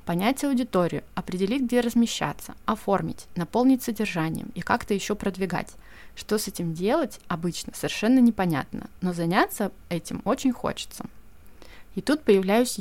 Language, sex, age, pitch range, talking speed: Russian, female, 20-39, 180-225 Hz, 125 wpm